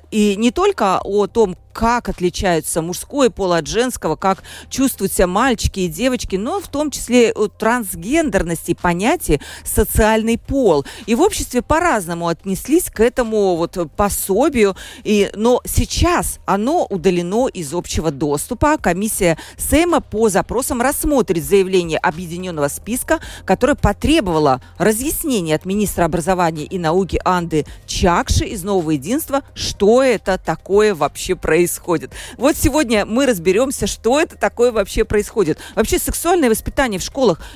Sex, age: female, 40-59